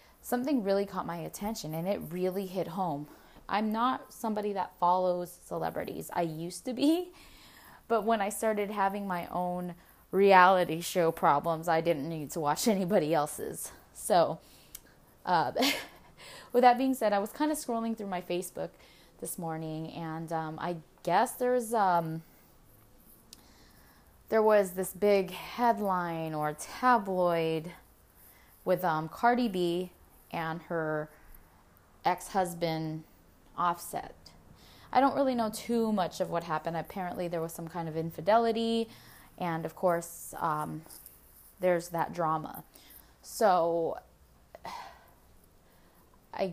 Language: English